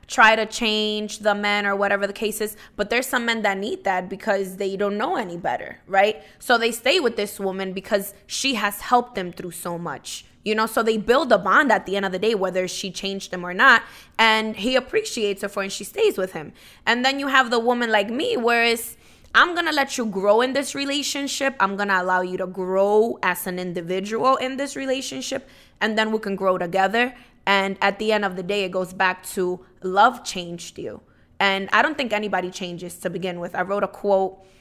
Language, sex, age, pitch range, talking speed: English, female, 20-39, 190-240 Hz, 225 wpm